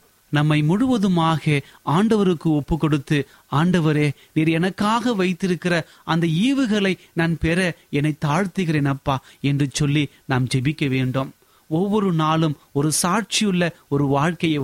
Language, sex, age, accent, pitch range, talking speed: Tamil, male, 30-49, native, 135-175 Hz, 105 wpm